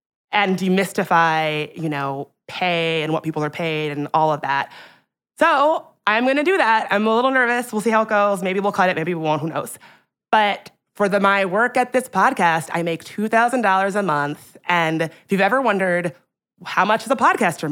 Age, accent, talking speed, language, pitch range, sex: 20-39, American, 205 wpm, English, 165-220 Hz, female